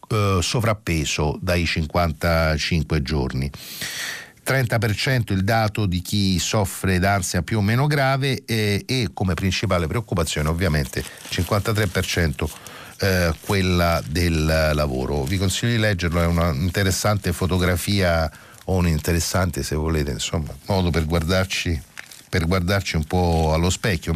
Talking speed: 120 wpm